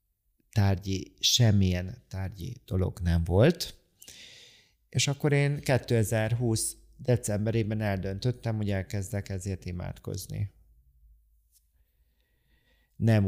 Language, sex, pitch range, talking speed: Hungarian, male, 95-120 Hz, 75 wpm